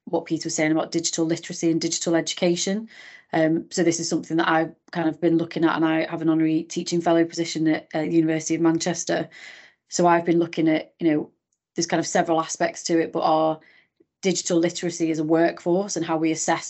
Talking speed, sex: 220 wpm, female